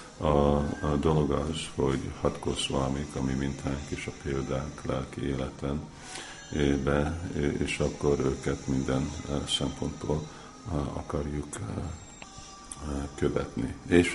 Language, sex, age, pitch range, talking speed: Hungarian, male, 50-69, 70-75 Hz, 90 wpm